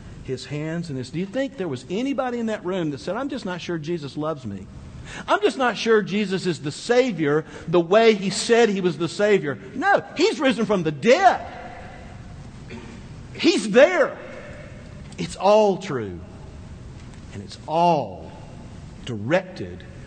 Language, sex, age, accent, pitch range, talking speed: English, male, 50-69, American, 155-250 Hz, 160 wpm